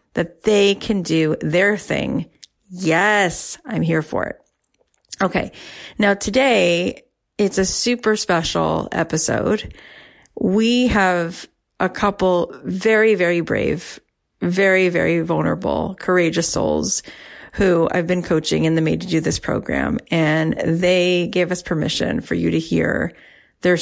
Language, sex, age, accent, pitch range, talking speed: English, female, 40-59, American, 165-205 Hz, 130 wpm